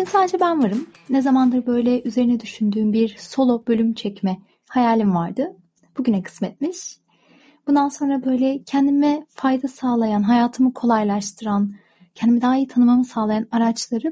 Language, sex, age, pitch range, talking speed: Turkish, female, 30-49, 210-280 Hz, 130 wpm